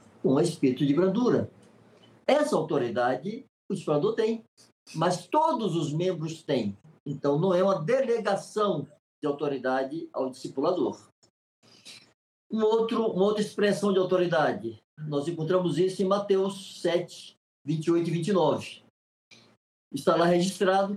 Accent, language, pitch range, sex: Brazilian, Portuguese, 150-205 Hz, male